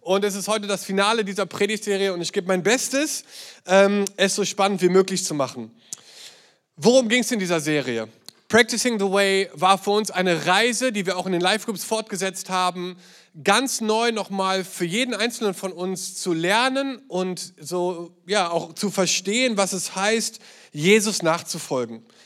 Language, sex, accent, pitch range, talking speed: German, male, German, 185-225 Hz, 175 wpm